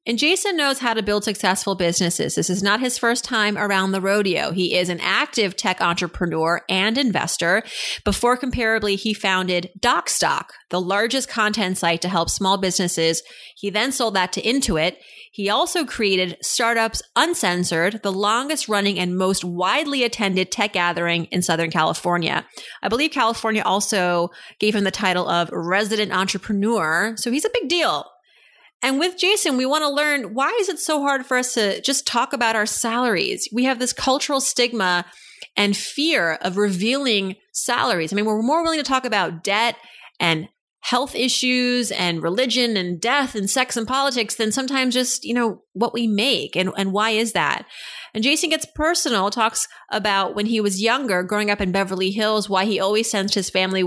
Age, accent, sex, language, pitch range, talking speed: 30-49, American, female, English, 185-250 Hz, 180 wpm